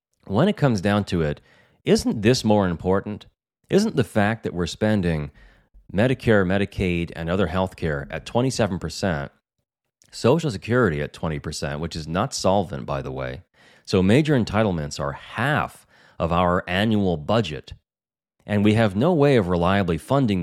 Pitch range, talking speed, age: 85-115 Hz, 155 wpm, 30-49